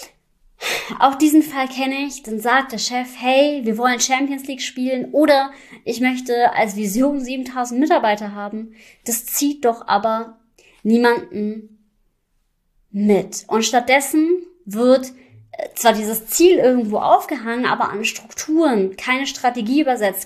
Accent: German